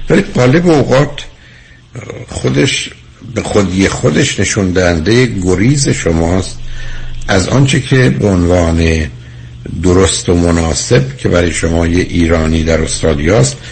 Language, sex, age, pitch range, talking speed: Persian, male, 60-79, 75-115 Hz, 105 wpm